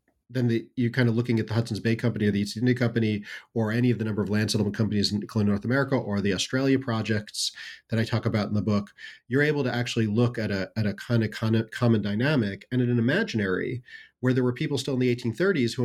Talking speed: 255 wpm